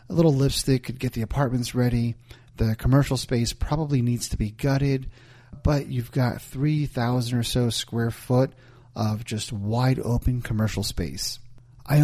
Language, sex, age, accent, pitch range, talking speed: English, male, 30-49, American, 115-135 Hz, 155 wpm